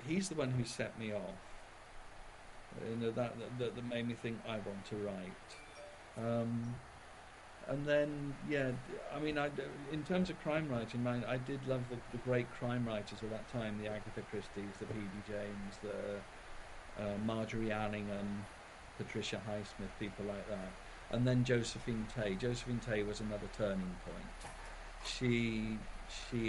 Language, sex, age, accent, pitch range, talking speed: English, male, 50-69, British, 105-125 Hz, 155 wpm